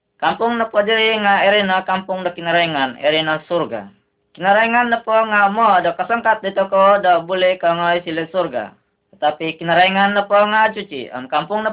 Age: 20-39